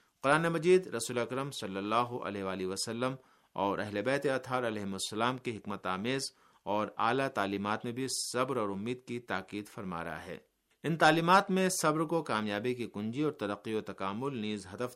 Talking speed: 175 wpm